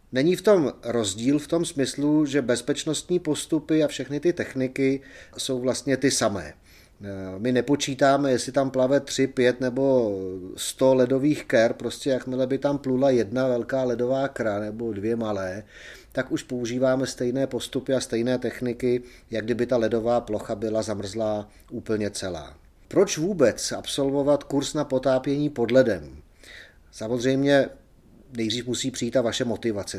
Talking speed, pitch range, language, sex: 145 wpm, 110-135 Hz, Czech, male